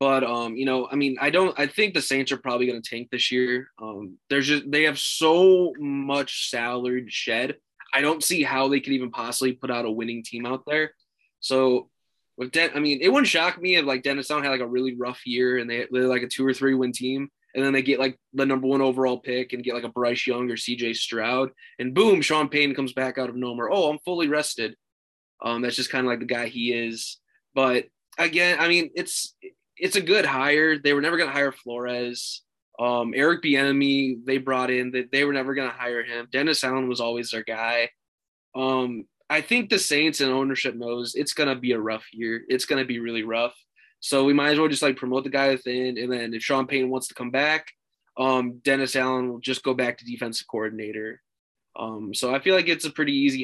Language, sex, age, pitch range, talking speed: English, male, 20-39, 120-140 Hz, 235 wpm